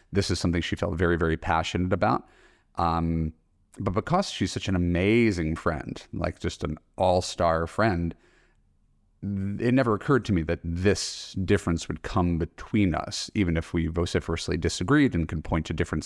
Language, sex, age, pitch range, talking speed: English, male, 30-49, 85-100 Hz, 165 wpm